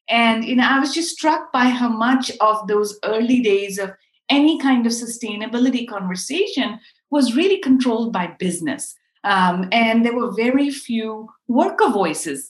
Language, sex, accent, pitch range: English, female, Indian, 200-255 Hz